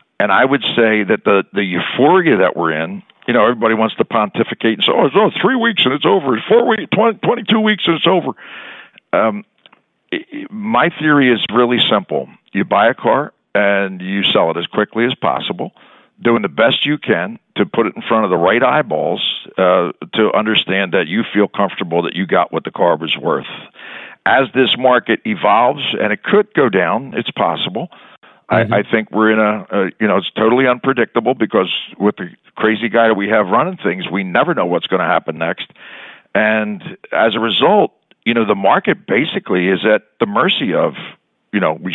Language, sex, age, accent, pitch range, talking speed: English, male, 60-79, American, 95-135 Hz, 200 wpm